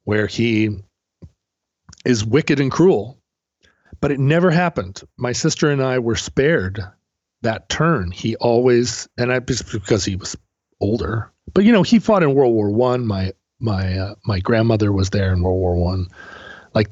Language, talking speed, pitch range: English, 165 wpm, 100-135 Hz